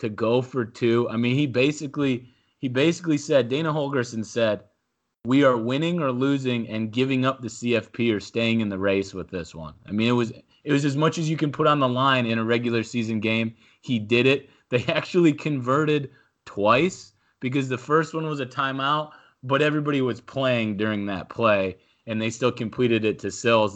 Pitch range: 110-130 Hz